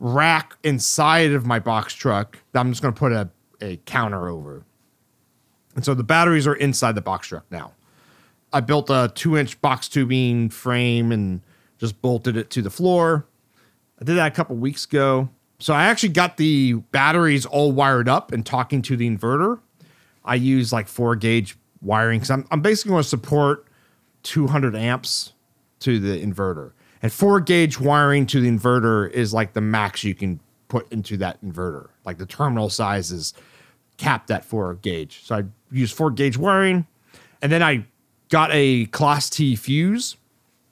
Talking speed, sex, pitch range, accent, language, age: 170 wpm, male, 110-145 Hz, American, English, 40-59